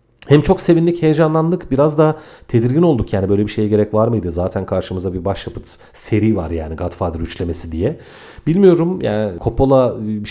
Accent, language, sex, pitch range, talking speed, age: native, Turkish, male, 95-125 Hz, 170 wpm, 40-59